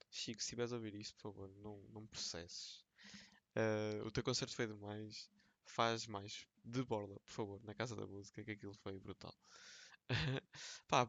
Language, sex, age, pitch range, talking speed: Portuguese, male, 20-39, 105-120 Hz, 175 wpm